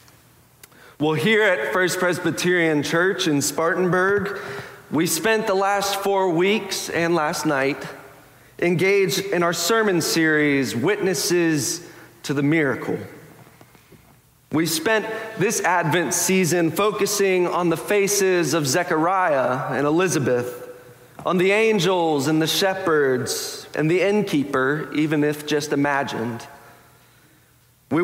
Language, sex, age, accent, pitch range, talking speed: English, male, 40-59, American, 145-190 Hz, 115 wpm